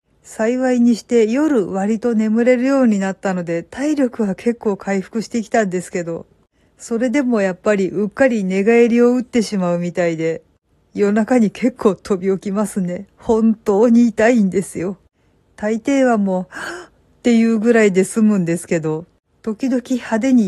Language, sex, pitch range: Japanese, female, 180-230 Hz